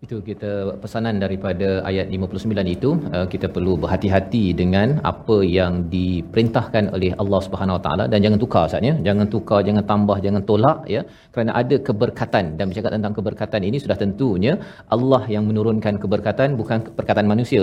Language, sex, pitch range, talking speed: Malayalam, male, 105-135 Hz, 165 wpm